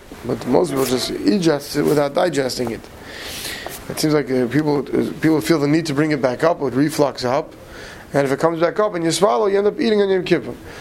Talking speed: 240 wpm